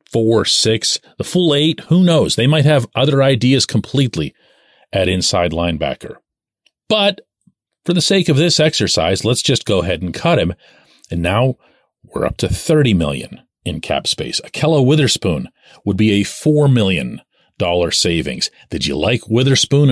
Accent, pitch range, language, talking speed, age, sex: American, 110-155 Hz, English, 155 wpm, 40-59, male